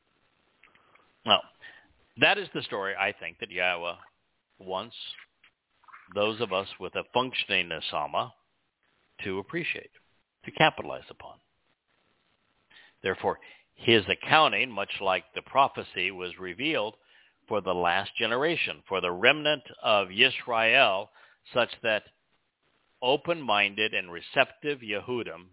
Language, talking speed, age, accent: English, 110 wpm, 60-79, American